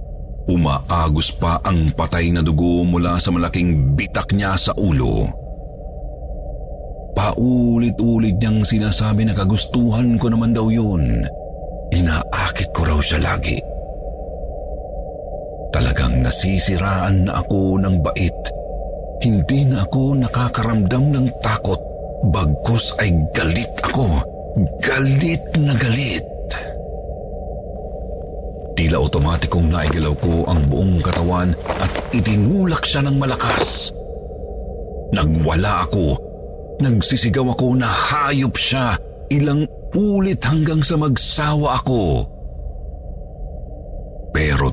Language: Filipino